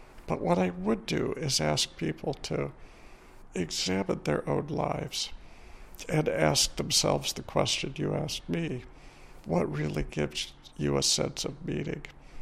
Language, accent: English, American